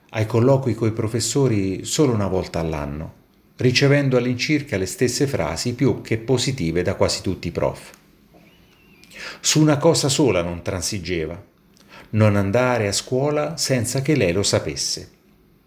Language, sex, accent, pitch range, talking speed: Italian, male, native, 95-140 Hz, 140 wpm